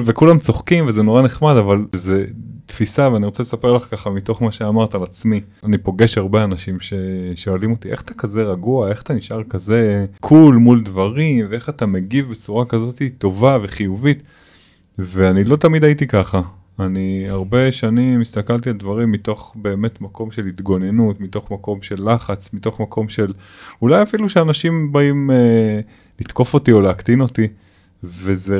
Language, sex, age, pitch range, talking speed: Hebrew, male, 20-39, 100-140 Hz, 160 wpm